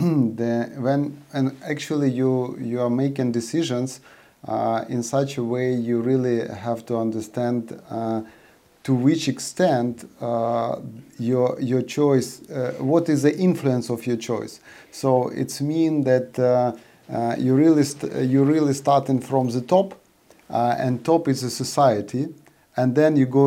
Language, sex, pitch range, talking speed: English, male, 120-145 Hz, 155 wpm